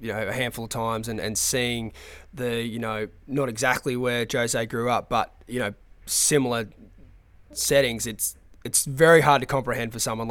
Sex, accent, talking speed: male, Australian, 180 wpm